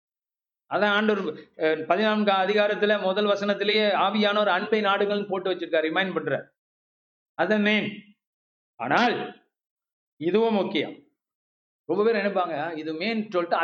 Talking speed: 105 wpm